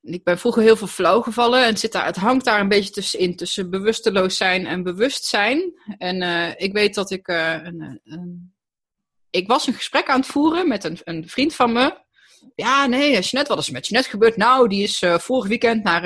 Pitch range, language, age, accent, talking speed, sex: 170-220 Hz, Dutch, 20-39, Dutch, 235 wpm, female